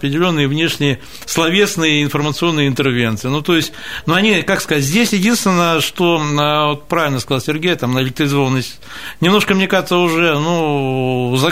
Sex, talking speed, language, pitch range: male, 150 wpm, Russian, 130-165 Hz